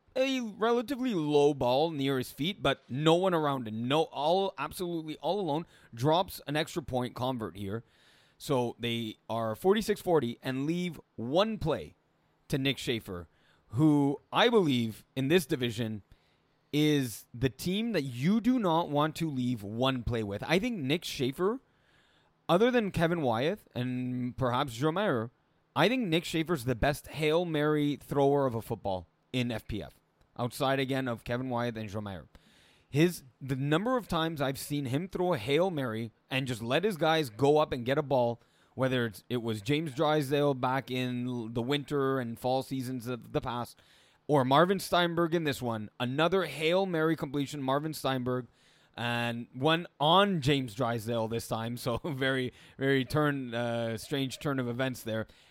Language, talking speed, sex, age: English, 165 wpm, male, 30-49